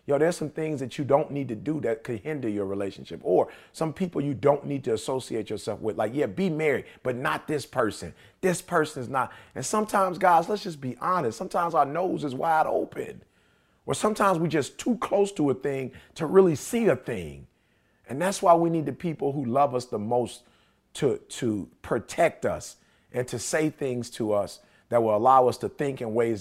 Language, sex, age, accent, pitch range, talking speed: English, male, 30-49, American, 120-180 Hz, 215 wpm